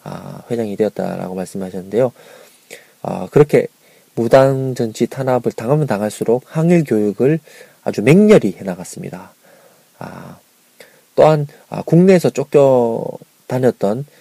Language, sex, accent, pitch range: Korean, male, native, 100-140 Hz